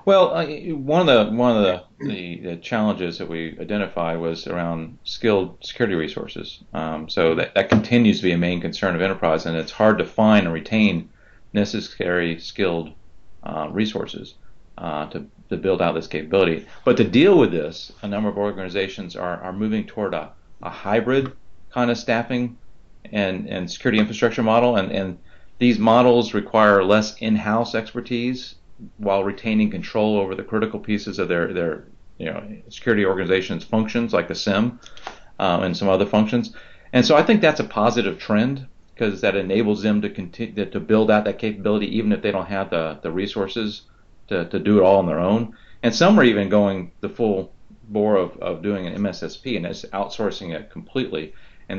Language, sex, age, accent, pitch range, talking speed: English, male, 40-59, American, 95-115 Hz, 185 wpm